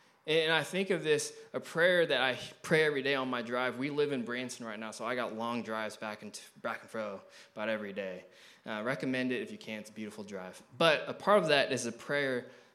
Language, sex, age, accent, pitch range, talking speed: English, male, 20-39, American, 115-155 Hz, 255 wpm